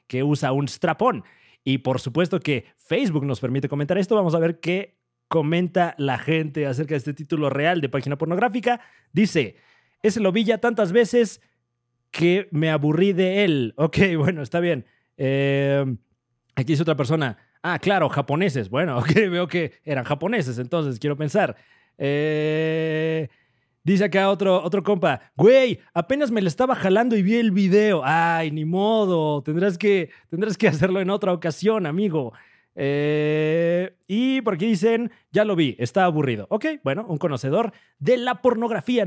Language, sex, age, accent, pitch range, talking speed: Spanish, male, 30-49, Mexican, 155-215 Hz, 165 wpm